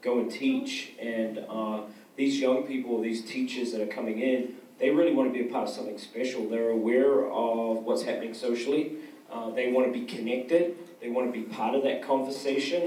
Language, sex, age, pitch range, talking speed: English, male, 30-49, 120-145 Hz, 205 wpm